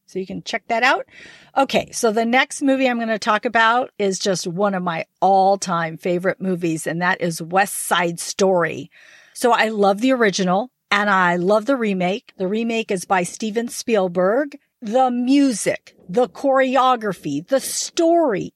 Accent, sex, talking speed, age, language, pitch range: American, female, 170 wpm, 50-69, English, 195-265 Hz